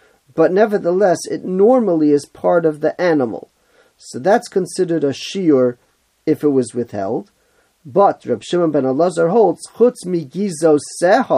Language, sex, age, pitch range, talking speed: English, male, 40-59, 135-180 Hz, 115 wpm